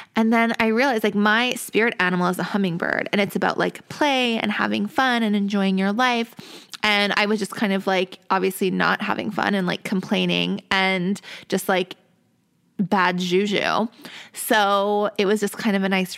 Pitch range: 195-245 Hz